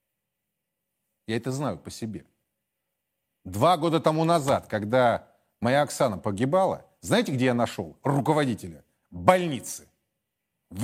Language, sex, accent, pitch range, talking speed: Russian, male, native, 120-175 Hz, 110 wpm